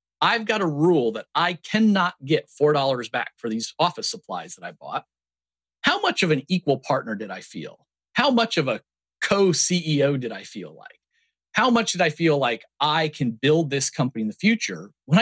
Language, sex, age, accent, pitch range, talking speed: English, male, 40-59, American, 120-180 Hz, 195 wpm